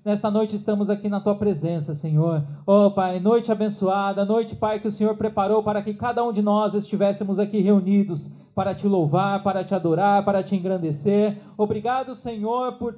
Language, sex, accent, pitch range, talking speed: Portuguese, male, Brazilian, 210-255 Hz, 180 wpm